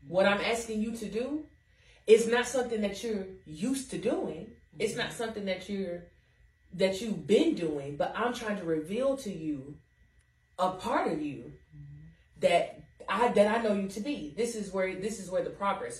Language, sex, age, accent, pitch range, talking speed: English, female, 30-49, American, 160-230 Hz, 190 wpm